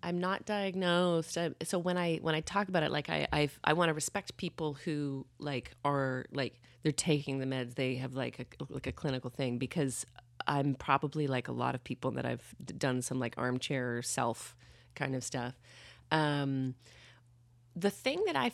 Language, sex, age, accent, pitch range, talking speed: English, female, 30-49, American, 130-165 Hz, 190 wpm